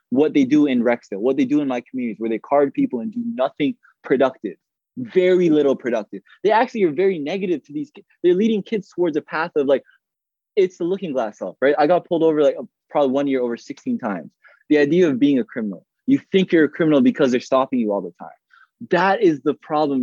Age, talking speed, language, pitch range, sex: 20-39, 230 wpm, English, 145-230 Hz, male